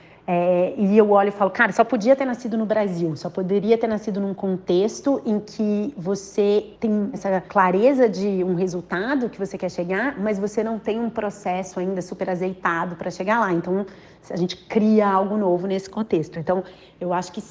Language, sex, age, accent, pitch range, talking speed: Portuguese, female, 30-49, Brazilian, 185-225 Hz, 190 wpm